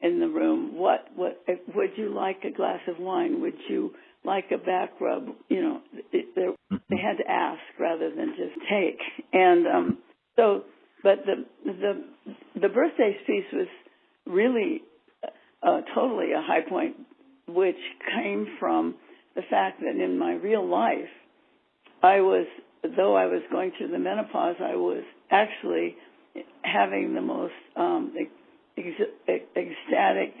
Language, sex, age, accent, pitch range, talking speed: English, female, 60-79, American, 235-360 Hz, 145 wpm